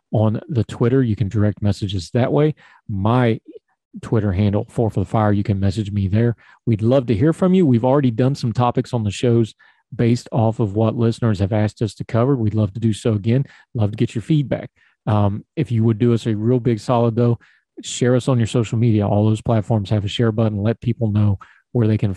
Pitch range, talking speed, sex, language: 105-120 Hz, 235 wpm, male, English